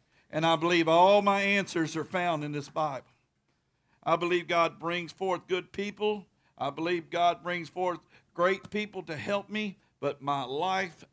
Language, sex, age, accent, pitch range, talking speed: English, male, 50-69, American, 155-220 Hz, 165 wpm